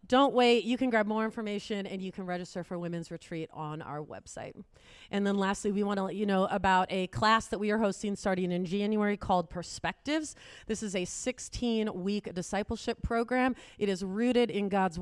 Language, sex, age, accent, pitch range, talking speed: English, female, 30-49, American, 180-220 Hz, 195 wpm